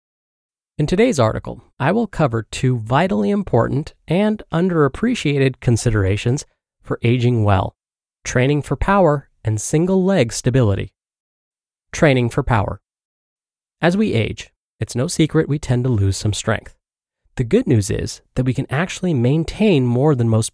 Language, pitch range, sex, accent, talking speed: English, 110-155 Hz, male, American, 145 wpm